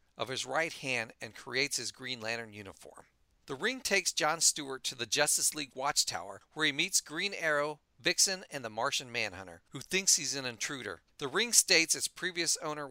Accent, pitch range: American, 125-170 Hz